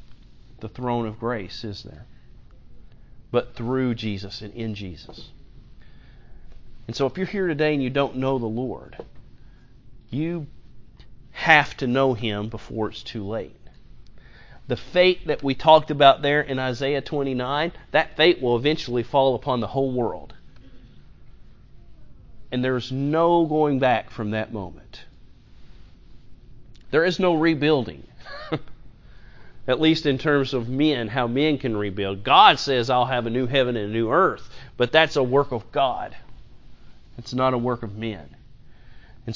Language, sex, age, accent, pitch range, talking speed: English, male, 40-59, American, 115-140 Hz, 150 wpm